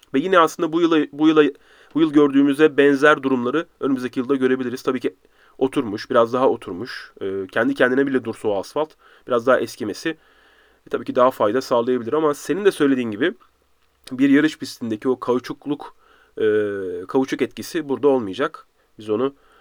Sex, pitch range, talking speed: male, 130-210 Hz, 160 wpm